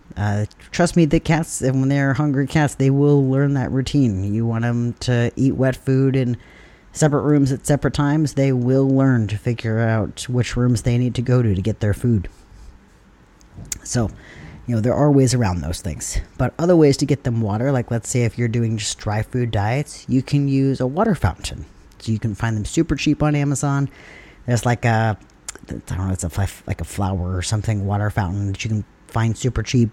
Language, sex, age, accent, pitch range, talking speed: English, male, 30-49, American, 105-135 Hz, 215 wpm